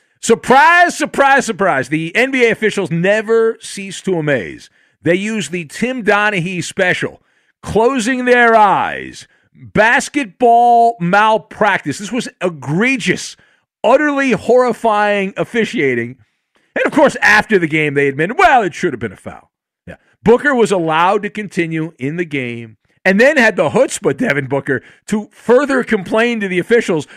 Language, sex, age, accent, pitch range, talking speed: English, male, 50-69, American, 180-235 Hz, 140 wpm